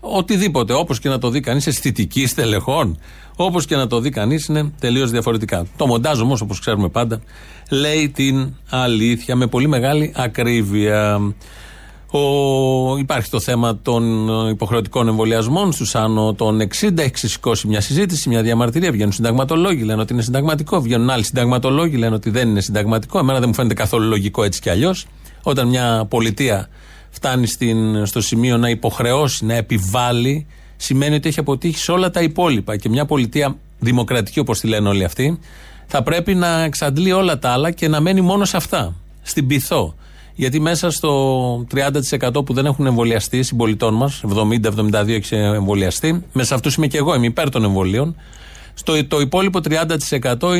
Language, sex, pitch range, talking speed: Greek, male, 110-150 Hz, 160 wpm